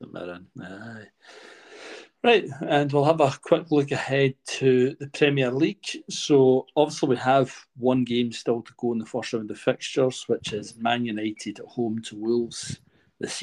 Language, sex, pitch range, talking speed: English, male, 110-135 Hz, 160 wpm